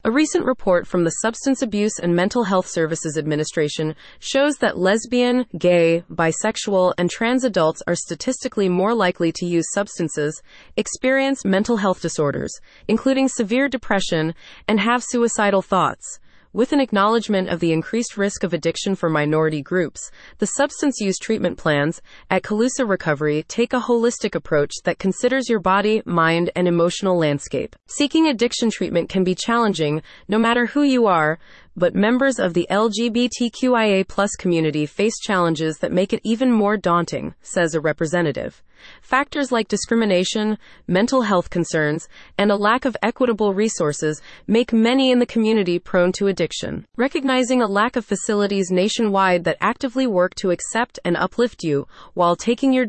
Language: English